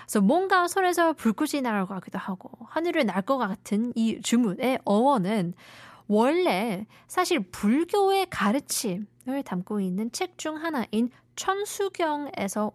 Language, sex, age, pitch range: Korean, female, 20-39, 200-290 Hz